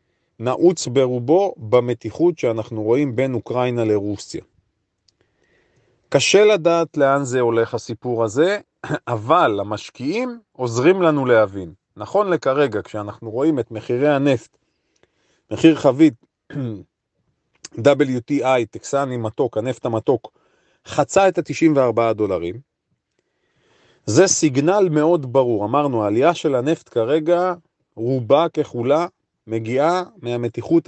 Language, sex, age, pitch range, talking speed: Hebrew, male, 40-59, 115-165 Hz, 100 wpm